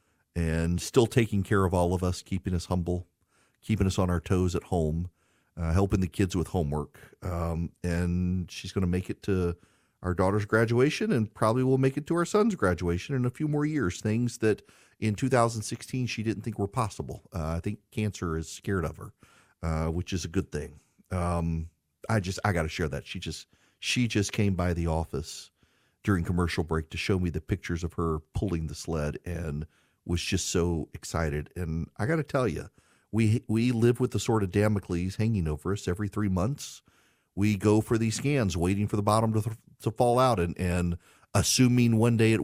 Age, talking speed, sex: 40-59, 205 wpm, male